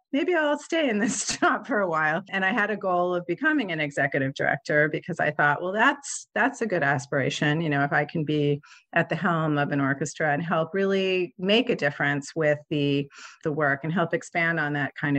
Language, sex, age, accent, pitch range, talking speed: English, female, 40-59, American, 150-195 Hz, 220 wpm